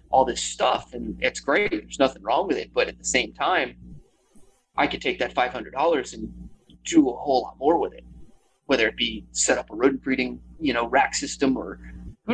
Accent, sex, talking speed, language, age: American, male, 220 wpm, English, 30-49